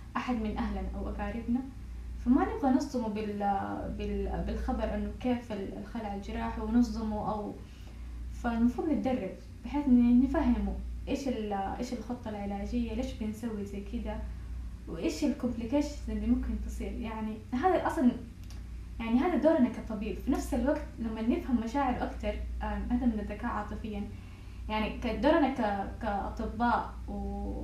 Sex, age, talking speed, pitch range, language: female, 10-29, 115 wpm, 210-250 Hz, Arabic